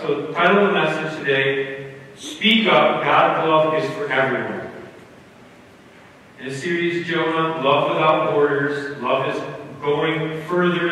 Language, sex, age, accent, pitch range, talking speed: English, male, 40-59, American, 145-195 Hz, 135 wpm